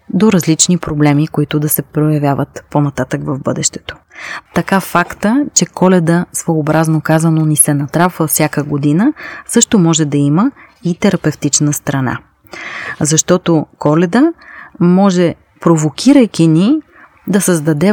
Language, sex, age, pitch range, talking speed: Bulgarian, female, 30-49, 150-190 Hz, 115 wpm